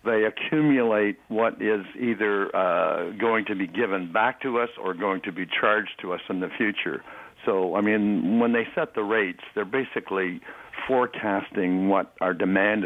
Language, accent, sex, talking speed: English, American, male, 175 wpm